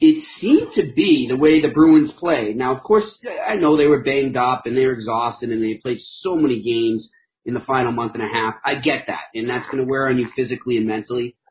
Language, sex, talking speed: English, male, 250 wpm